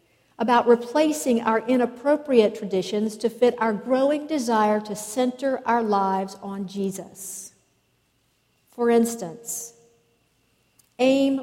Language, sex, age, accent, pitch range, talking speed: English, female, 50-69, American, 195-245 Hz, 100 wpm